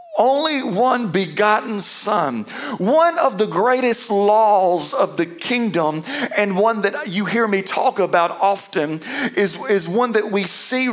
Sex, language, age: male, English, 50-69